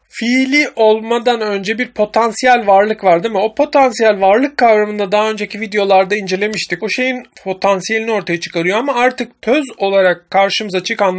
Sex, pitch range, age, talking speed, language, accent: male, 195-235 Hz, 40-59, 150 wpm, Turkish, native